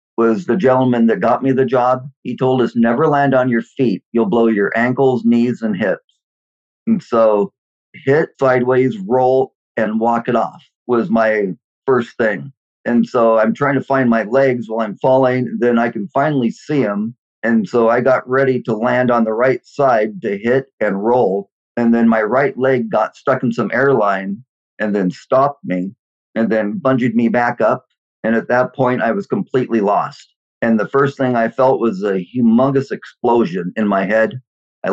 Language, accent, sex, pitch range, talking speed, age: English, American, male, 110-130 Hz, 190 wpm, 50-69